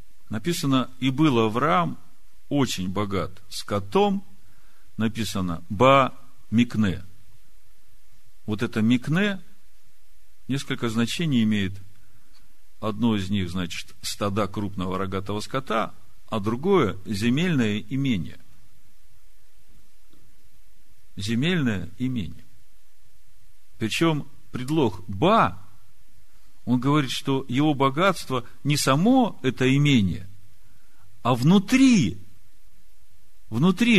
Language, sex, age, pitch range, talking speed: Russian, male, 50-69, 100-145 Hz, 80 wpm